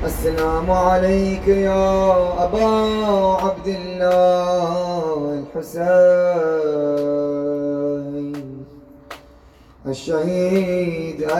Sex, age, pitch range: male, 20-39, 140-180 Hz